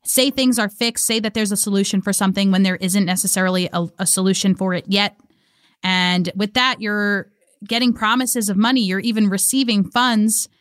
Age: 20-39